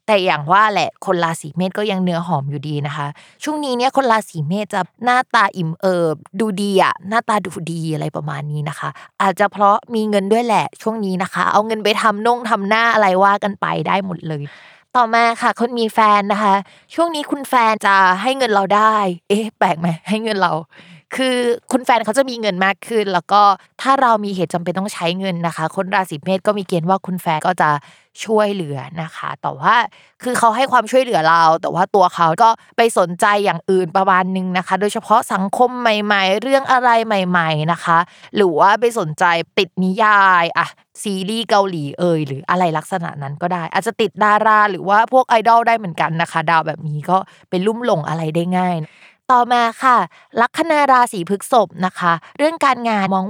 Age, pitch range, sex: 20-39, 170-225 Hz, female